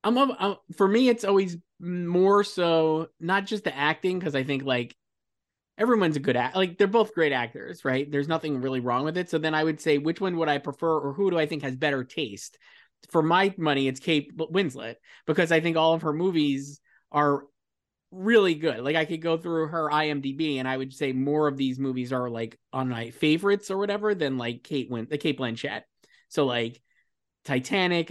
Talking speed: 205 wpm